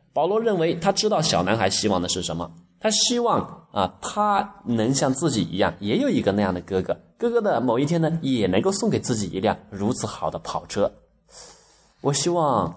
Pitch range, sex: 115-180 Hz, male